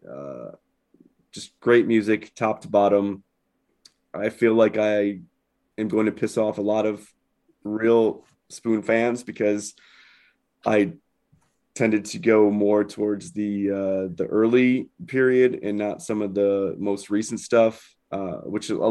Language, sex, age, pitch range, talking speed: English, male, 20-39, 105-115 Hz, 145 wpm